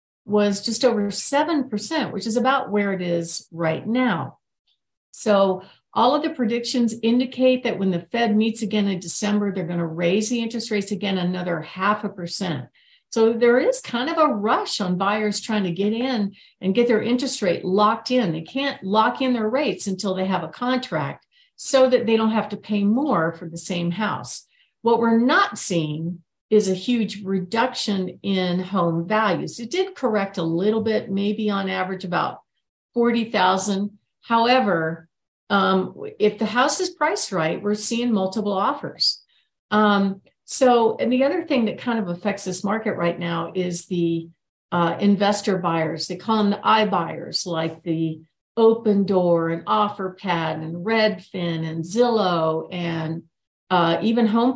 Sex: female